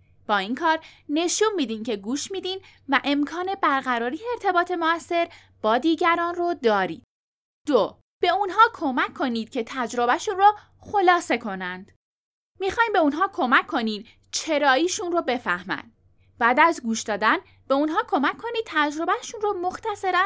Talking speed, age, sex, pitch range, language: 140 wpm, 10-29, female, 230-360 Hz, Persian